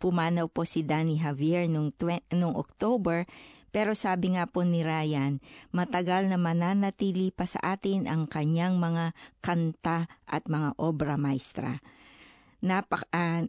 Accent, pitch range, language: Filipino, 160-195 Hz, Japanese